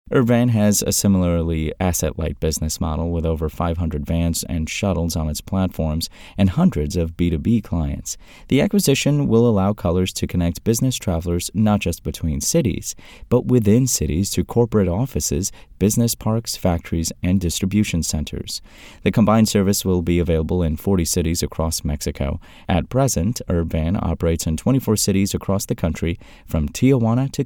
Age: 30-49